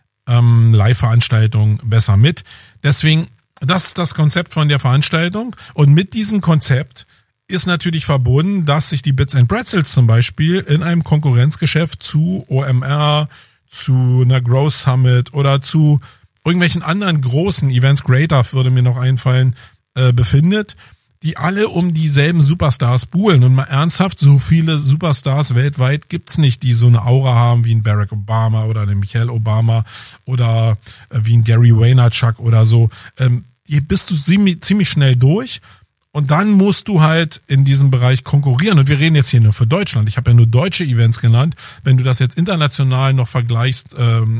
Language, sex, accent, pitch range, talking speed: German, male, German, 120-155 Hz, 165 wpm